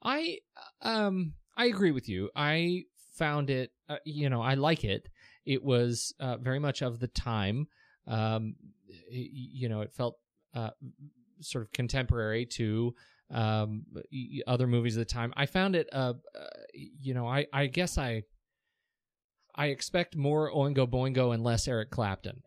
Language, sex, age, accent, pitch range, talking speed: English, male, 30-49, American, 110-135 Hz, 160 wpm